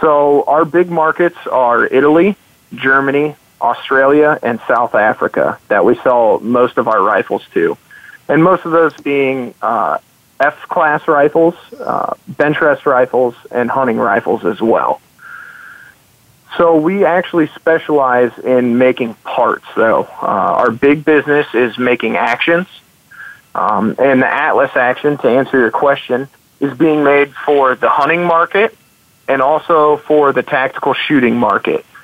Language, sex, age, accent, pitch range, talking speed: English, male, 40-59, American, 130-160 Hz, 140 wpm